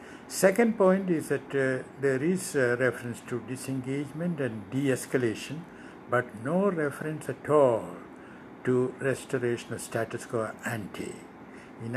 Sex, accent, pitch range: male, Indian, 115-140 Hz